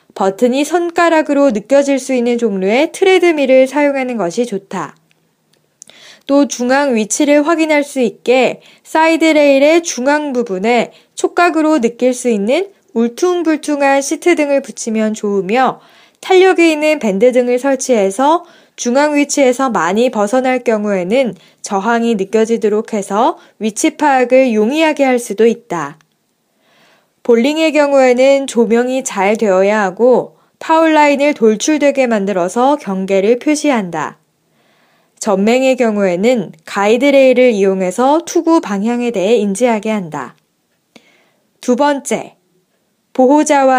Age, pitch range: 20-39, 225-295 Hz